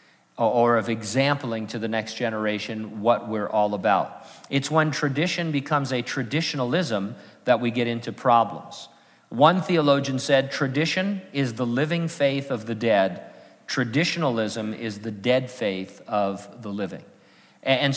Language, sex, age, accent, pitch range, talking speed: English, male, 50-69, American, 110-140 Hz, 140 wpm